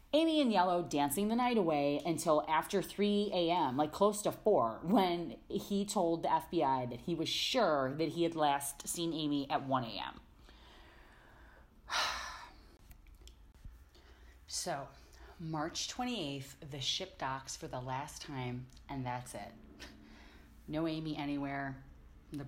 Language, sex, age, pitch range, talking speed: English, female, 30-49, 135-180 Hz, 135 wpm